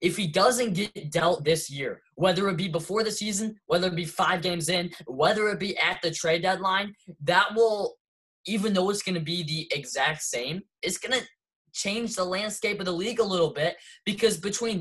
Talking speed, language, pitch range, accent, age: 205 wpm, English, 165-210 Hz, American, 10-29